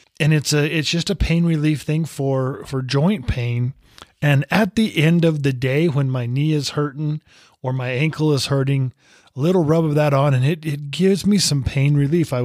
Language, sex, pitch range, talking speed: English, male, 130-170 Hz, 215 wpm